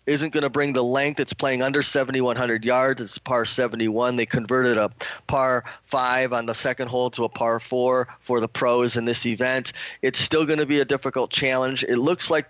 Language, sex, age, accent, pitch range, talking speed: English, male, 30-49, American, 120-145 Hz, 225 wpm